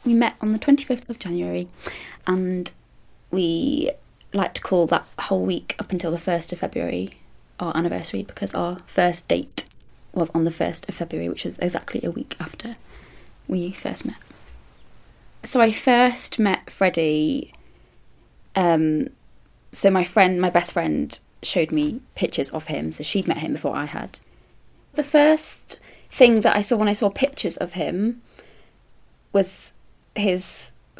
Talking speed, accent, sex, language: 155 wpm, British, female, English